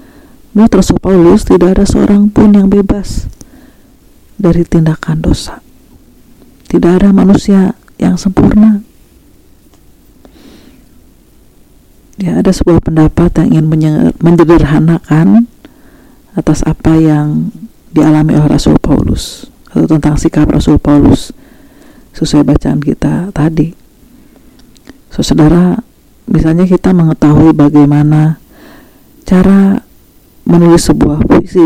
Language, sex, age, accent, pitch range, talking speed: Indonesian, female, 50-69, native, 155-195 Hz, 95 wpm